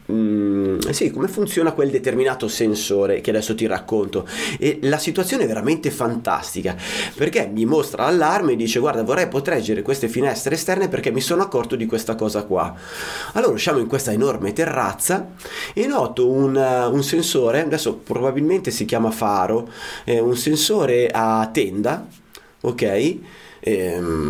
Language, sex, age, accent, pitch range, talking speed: Italian, male, 30-49, native, 110-150 Hz, 150 wpm